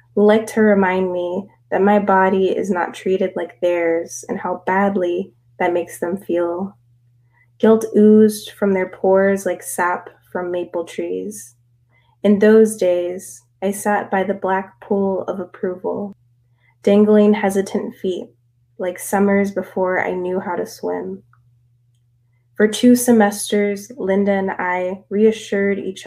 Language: English